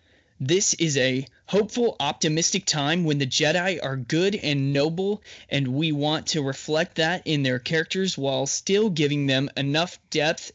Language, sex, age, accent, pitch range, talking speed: English, male, 20-39, American, 140-165 Hz, 160 wpm